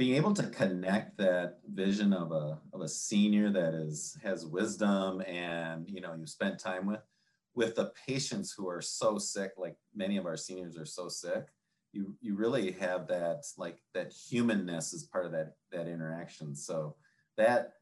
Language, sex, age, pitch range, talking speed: English, male, 30-49, 80-105 Hz, 180 wpm